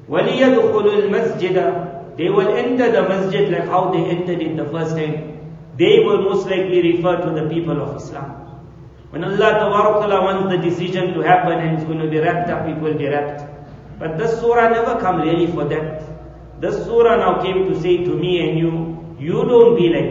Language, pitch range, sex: English, 160-200 Hz, male